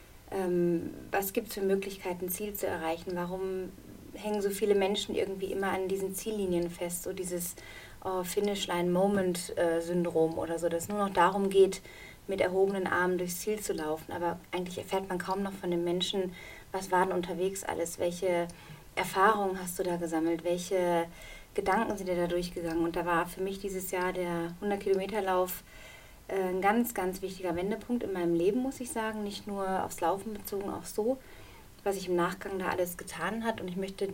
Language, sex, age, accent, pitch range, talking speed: German, female, 30-49, German, 175-195 Hz, 190 wpm